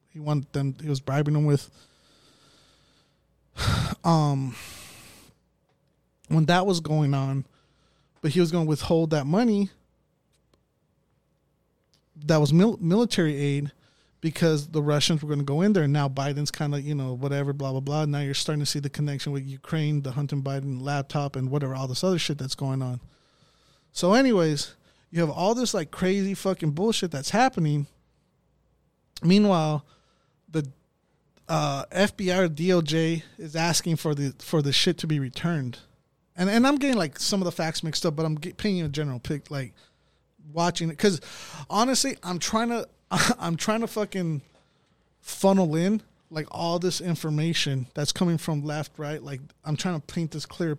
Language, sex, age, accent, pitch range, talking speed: English, male, 20-39, American, 140-175 Hz, 170 wpm